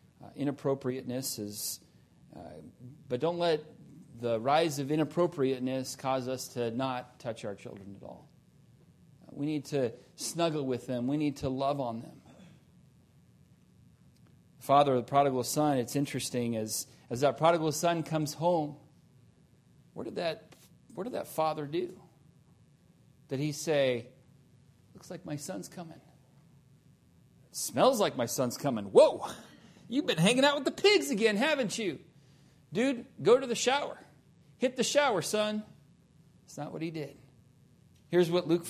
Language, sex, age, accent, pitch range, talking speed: English, male, 40-59, American, 140-195 Hz, 150 wpm